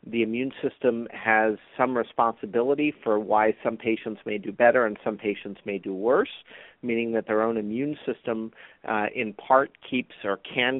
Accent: American